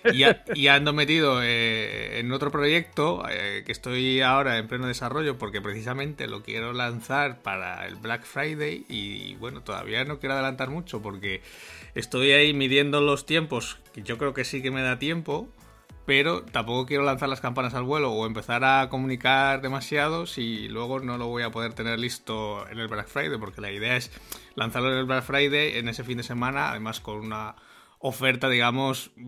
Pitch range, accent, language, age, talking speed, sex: 105-135 Hz, Spanish, Spanish, 30-49, 190 wpm, male